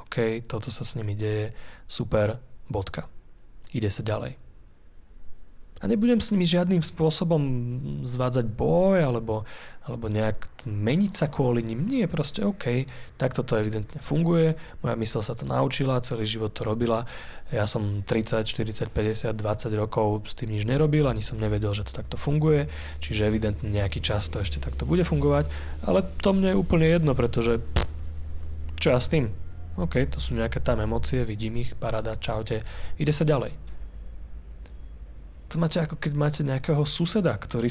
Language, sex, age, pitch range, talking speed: Slovak, male, 30-49, 100-130 Hz, 160 wpm